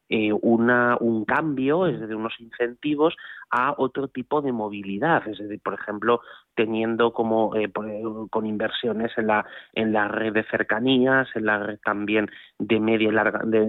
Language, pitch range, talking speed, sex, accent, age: Spanish, 110-125 Hz, 165 wpm, male, Spanish, 30-49